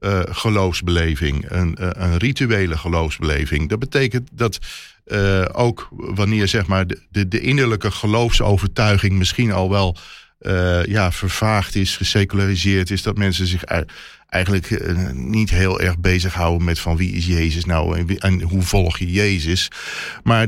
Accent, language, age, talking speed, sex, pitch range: Dutch, Dutch, 40-59, 140 wpm, male, 90-115 Hz